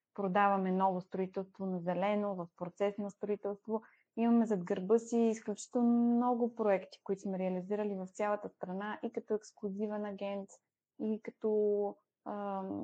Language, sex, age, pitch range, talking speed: Bulgarian, female, 20-39, 195-225 Hz, 135 wpm